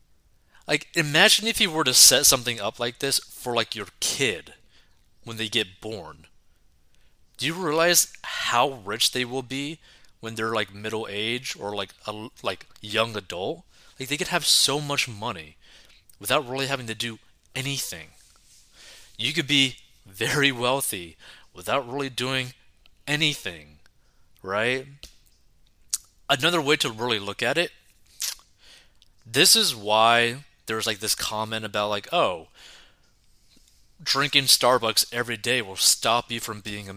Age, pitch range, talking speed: 30-49, 105-135 Hz, 145 wpm